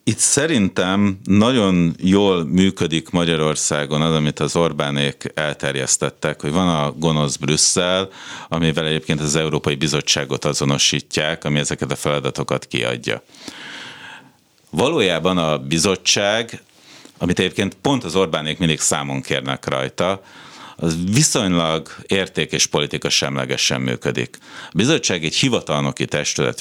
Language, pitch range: Hungarian, 70-95 Hz